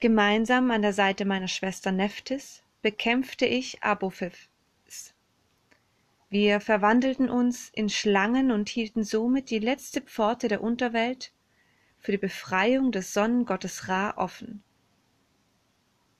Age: 30-49